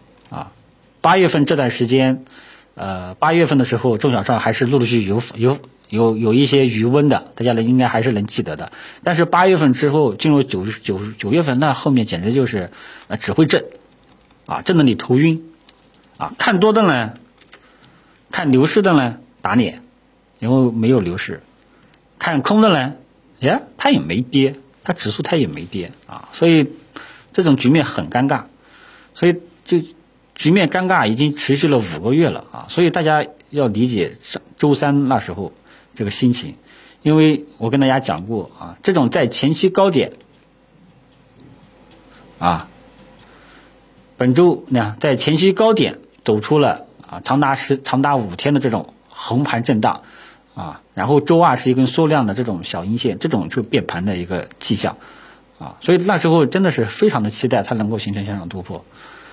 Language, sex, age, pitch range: Chinese, male, 50-69, 115-155 Hz